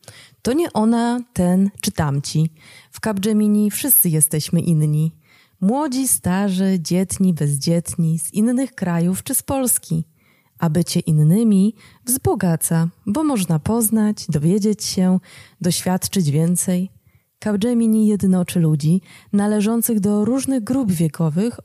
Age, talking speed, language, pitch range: 20-39, 110 wpm, Polish, 165-215 Hz